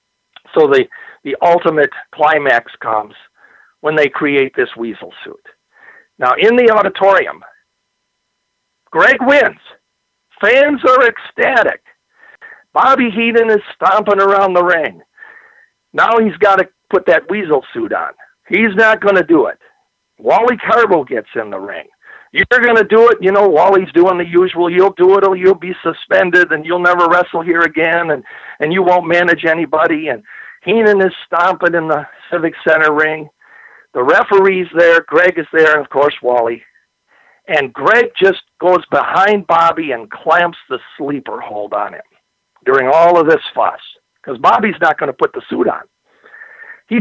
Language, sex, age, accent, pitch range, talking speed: English, male, 50-69, American, 155-260 Hz, 155 wpm